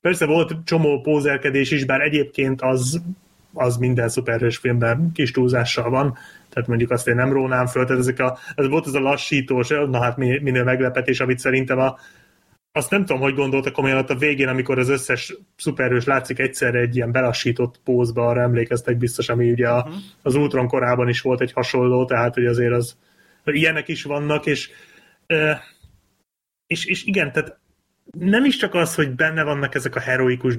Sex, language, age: male, Hungarian, 30-49